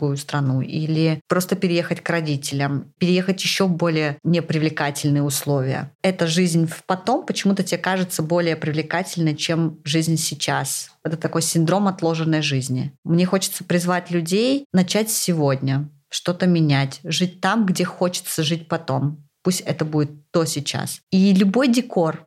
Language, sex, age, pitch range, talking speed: Russian, female, 20-39, 155-185 Hz, 140 wpm